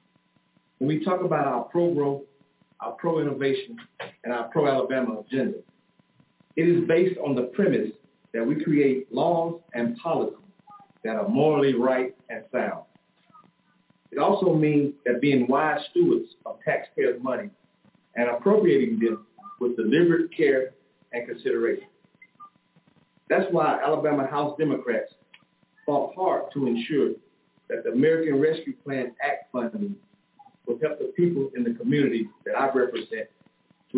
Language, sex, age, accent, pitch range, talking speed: English, male, 40-59, American, 140-200 Hz, 130 wpm